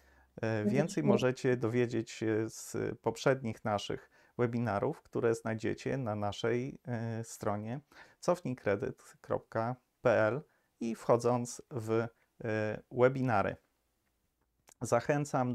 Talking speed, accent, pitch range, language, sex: 75 wpm, native, 105-125 Hz, Polish, male